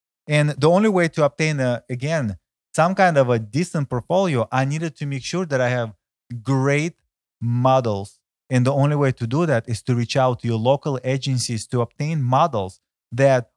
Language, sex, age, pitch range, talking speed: English, male, 30-49, 120-150 Hz, 185 wpm